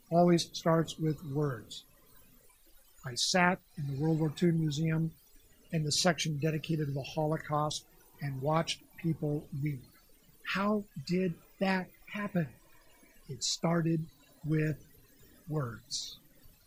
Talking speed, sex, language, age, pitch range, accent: 110 wpm, male, English, 50-69, 150-200 Hz, American